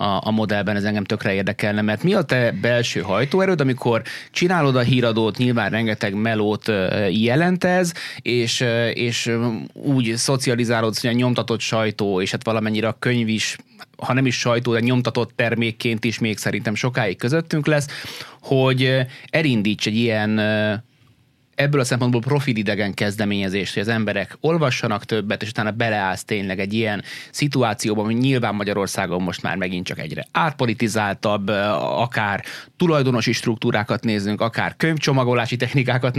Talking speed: 140 wpm